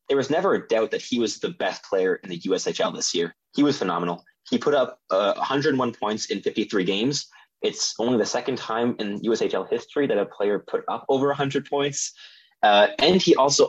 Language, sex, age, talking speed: English, male, 20-39, 210 wpm